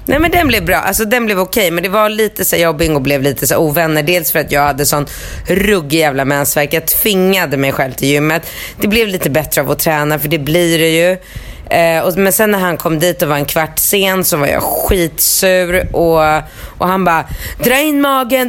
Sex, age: female, 30-49